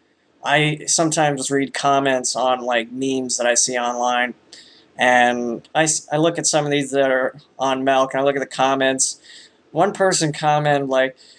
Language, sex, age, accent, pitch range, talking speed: English, male, 20-39, American, 140-175 Hz, 175 wpm